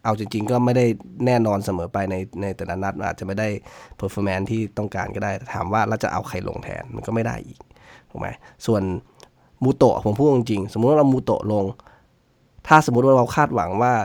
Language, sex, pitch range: Thai, male, 100-125 Hz